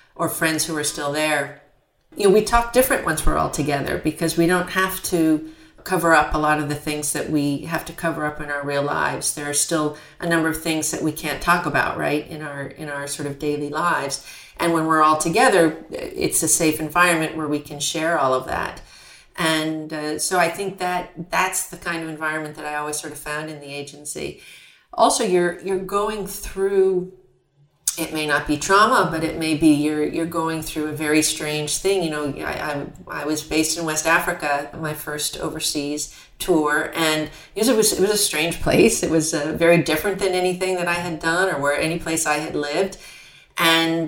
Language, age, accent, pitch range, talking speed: English, 40-59, American, 150-175 Hz, 215 wpm